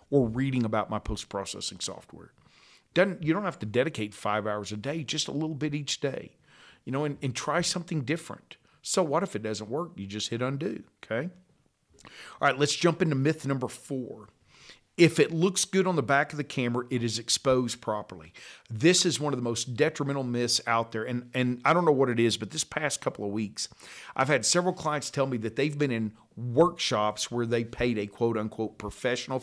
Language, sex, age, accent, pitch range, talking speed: English, male, 50-69, American, 105-145 Hz, 210 wpm